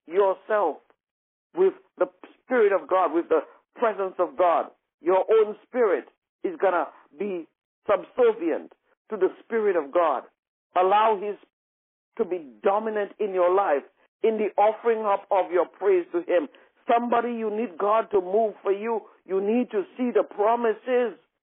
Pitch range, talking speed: 190-240 Hz, 155 wpm